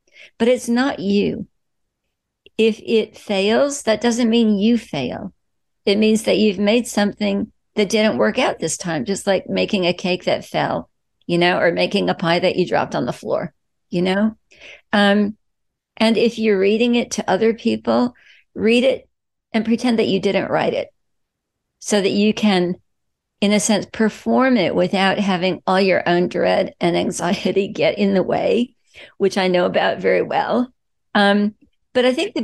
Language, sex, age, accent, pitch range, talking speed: English, female, 50-69, American, 180-225 Hz, 175 wpm